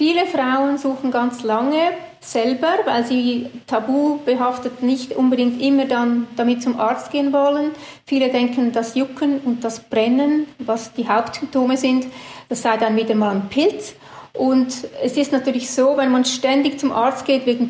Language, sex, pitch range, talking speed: German, female, 235-275 Hz, 165 wpm